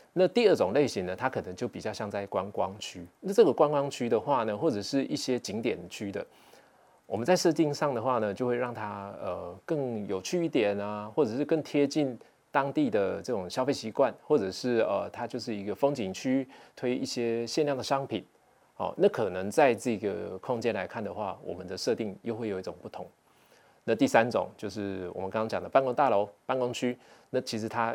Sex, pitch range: male, 105-130 Hz